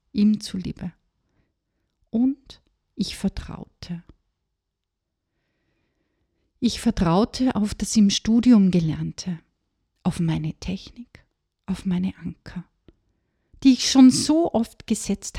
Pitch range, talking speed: 170-230 Hz, 100 wpm